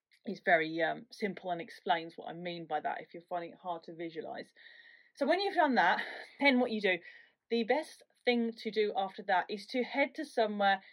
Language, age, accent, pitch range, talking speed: English, 30-49, British, 185-235 Hz, 215 wpm